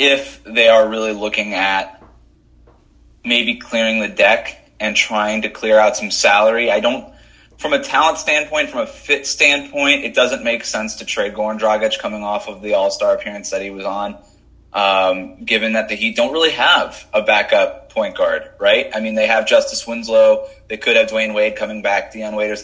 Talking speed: 195 wpm